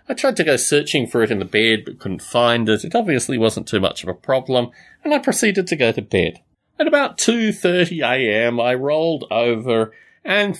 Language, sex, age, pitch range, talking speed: English, male, 30-49, 120-205 Hz, 205 wpm